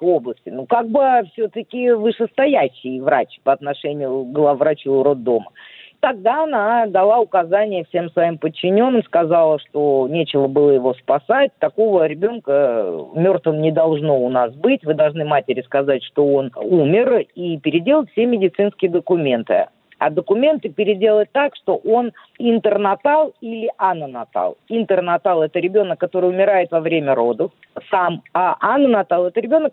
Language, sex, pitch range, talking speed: Russian, female, 155-225 Hz, 135 wpm